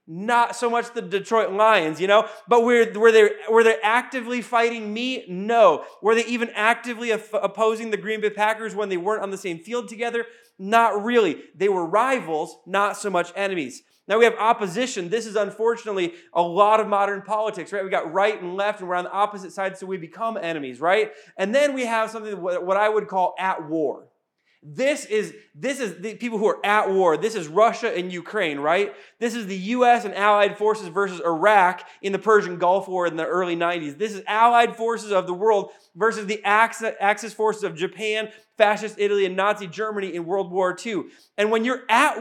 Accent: American